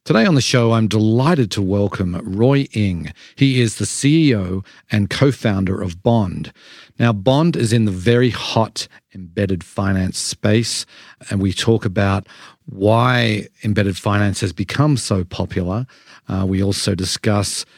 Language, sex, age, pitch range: English, male, 50-69, 100-120 Hz